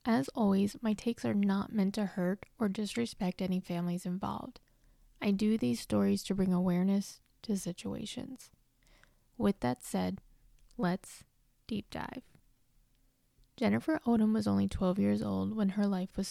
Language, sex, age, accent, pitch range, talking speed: English, female, 20-39, American, 175-215 Hz, 145 wpm